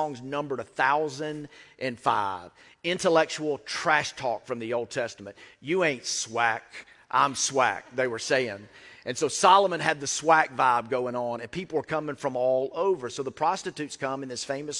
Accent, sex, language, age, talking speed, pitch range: American, male, English, 40-59, 175 wpm, 130-165 Hz